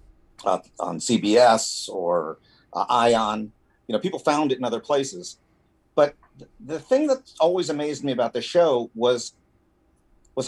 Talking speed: 150 wpm